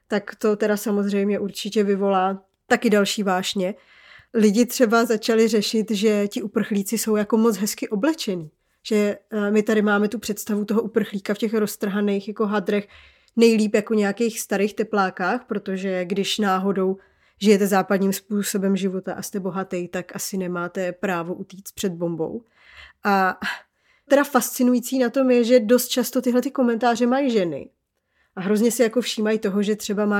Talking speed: 155 wpm